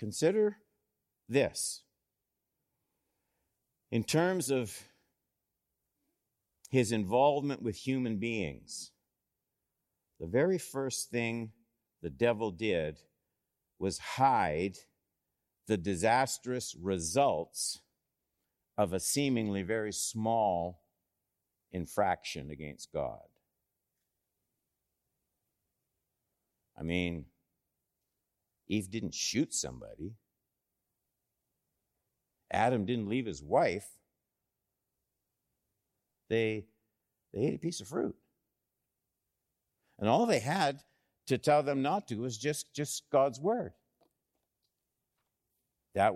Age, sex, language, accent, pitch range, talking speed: 50-69, male, English, American, 95-130 Hz, 80 wpm